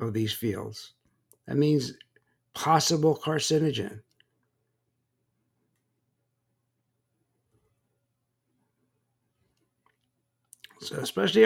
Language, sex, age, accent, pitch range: English, male, 60-79, American, 115-145 Hz